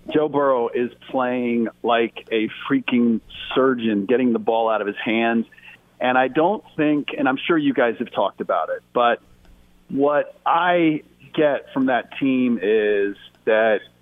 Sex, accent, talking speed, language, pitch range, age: male, American, 160 wpm, English, 115-150 Hz, 40-59